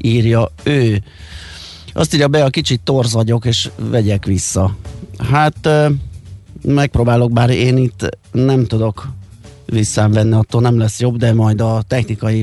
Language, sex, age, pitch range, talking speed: Hungarian, male, 30-49, 110-135 Hz, 135 wpm